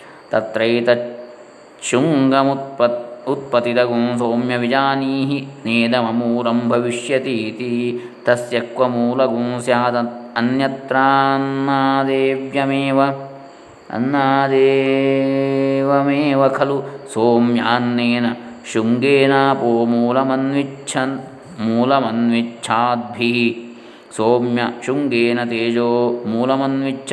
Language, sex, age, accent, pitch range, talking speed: Kannada, male, 20-39, native, 120-140 Hz, 40 wpm